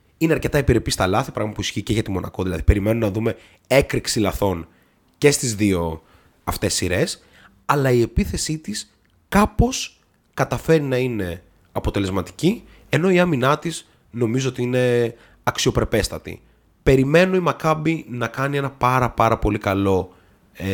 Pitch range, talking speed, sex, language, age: 95-130 Hz, 140 wpm, male, Greek, 30-49